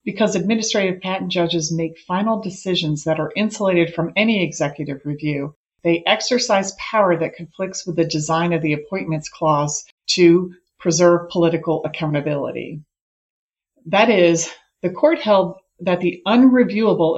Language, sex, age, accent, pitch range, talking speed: English, female, 40-59, American, 155-195 Hz, 135 wpm